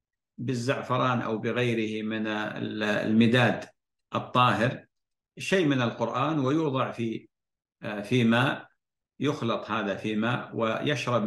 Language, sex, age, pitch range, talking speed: Arabic, male, 50-69, 110-130 Hz, 95 wpm